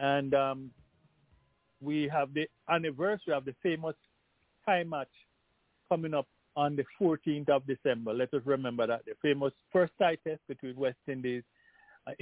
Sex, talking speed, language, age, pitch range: male, 150 wpm, English, 50-69, 130-175 Hz